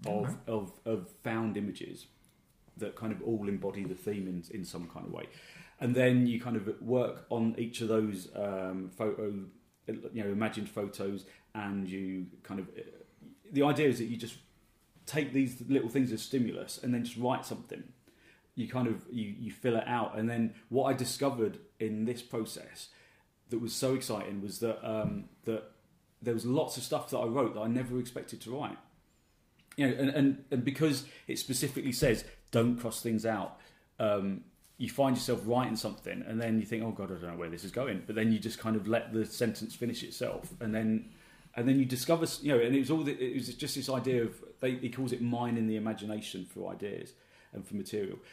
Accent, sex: British, male